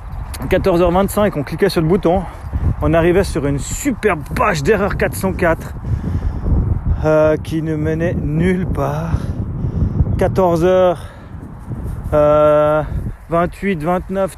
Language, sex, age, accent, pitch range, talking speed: French, male, 30-49, French, 140-190 Hz, 90 wpm